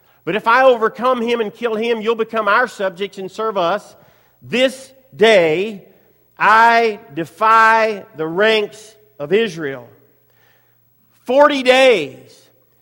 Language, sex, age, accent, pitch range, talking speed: English, male, 50-69, American, 190-245 Hz, 115 wpm